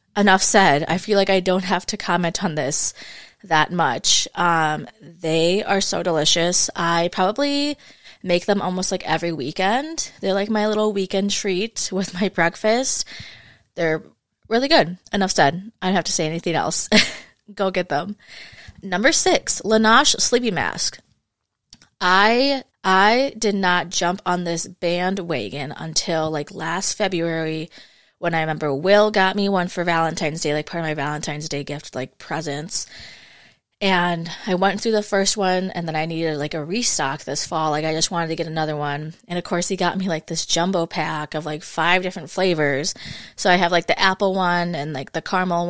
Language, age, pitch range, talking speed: English, 20-39, 160-200 Hz, 180 wpm